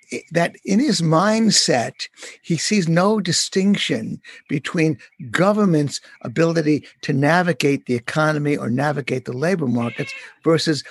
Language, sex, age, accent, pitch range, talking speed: English, male, 60-79, American, 150-190 Hz, 115 wpm